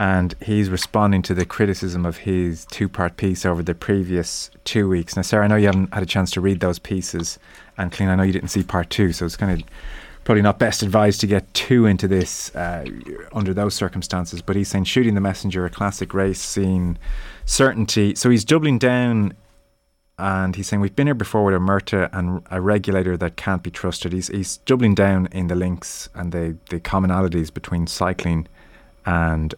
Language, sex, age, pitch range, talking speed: English, male, 30-49, 90-105 Hz, 205 wpm